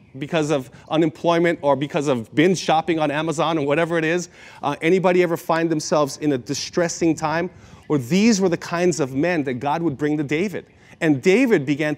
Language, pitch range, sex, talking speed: English, 150-195 Hz, male, 195 wpm